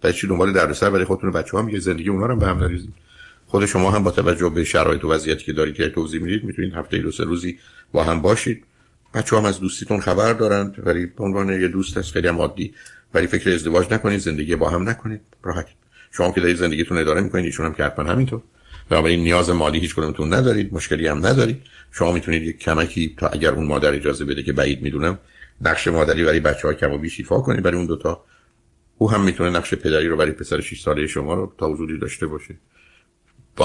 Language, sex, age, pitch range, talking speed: Persian, male, 50-69, 80-100 Hz, 215 wpm